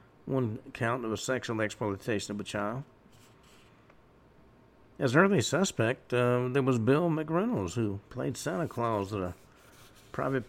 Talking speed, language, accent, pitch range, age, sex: 135 wpm, English, American, 105-135 Hz, 50-69, male